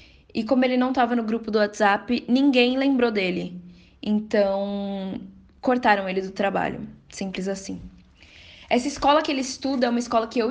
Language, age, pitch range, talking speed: Portuguese, 10-29, 200-245 Hz, 165 wpm